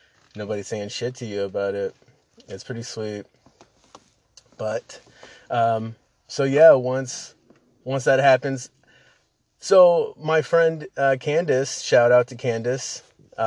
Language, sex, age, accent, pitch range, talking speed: English, male, 30-49, American, 120-145 Hz, 120 wpm